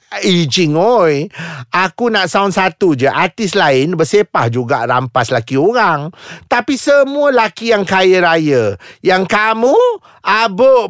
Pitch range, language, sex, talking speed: 160-220 Hz, Malay, male, 125 wpm